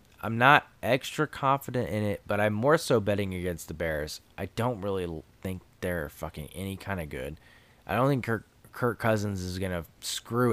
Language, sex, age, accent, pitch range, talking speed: English, male, 20-39, American, 90-115 Hz, 195 wpm